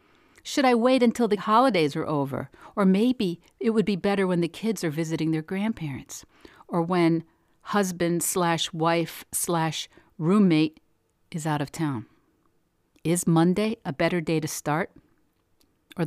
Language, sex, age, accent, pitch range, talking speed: English, female, 50-69, American, 160-220 Hz, 135 wpm